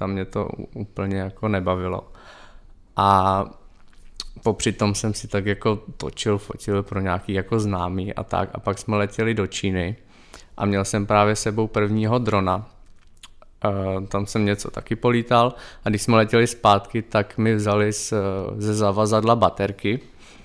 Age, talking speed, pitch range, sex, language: 20-39, 145 wpm, 100-115 Hz, male, Czech